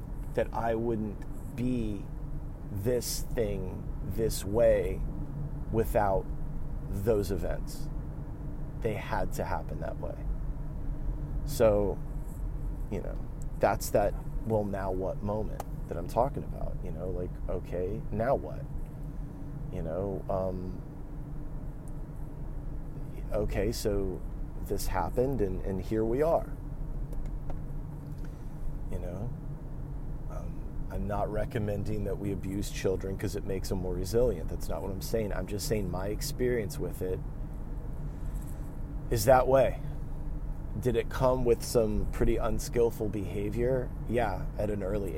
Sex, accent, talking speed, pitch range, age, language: male, American, 120 wpm, 95-125 Hz, 30-49, English